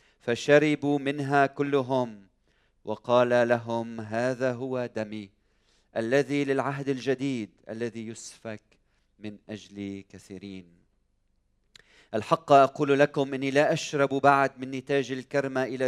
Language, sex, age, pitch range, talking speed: Arabic, male, 40-59, 105-140 Hz, 100 wpm